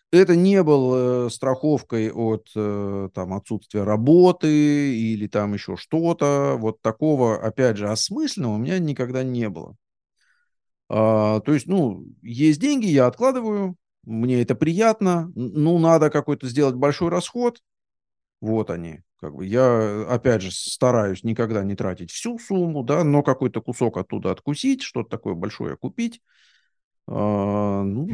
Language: Russian